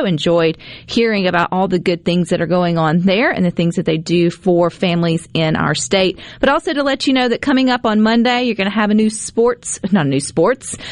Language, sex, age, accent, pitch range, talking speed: English, female, 40-59, American, 170-210 Hz, 245 wpm